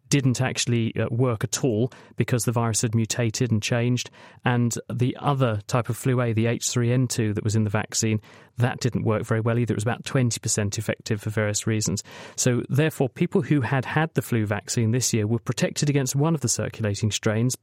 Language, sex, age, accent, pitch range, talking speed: English, male, 40-59, British, 115-140 Hz, 200 wpm